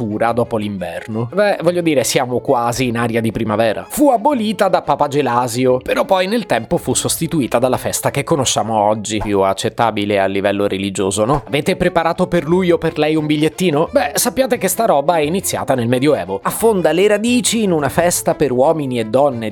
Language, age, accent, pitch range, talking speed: Italian, 30-49, native, 115-175 Hz, 190 wpm